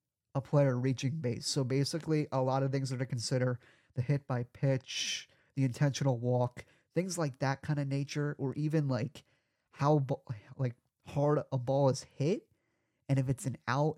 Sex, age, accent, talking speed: male, 30-49, American, 180 wpm